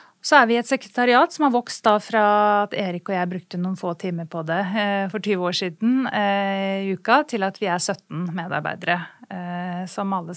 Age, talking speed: 30-49, 195 wpm